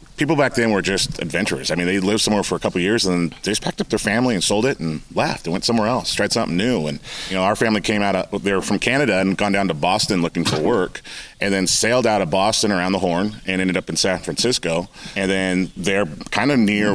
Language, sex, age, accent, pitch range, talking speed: English, male, 30-49, American, 90-105 Hz, 270 wpm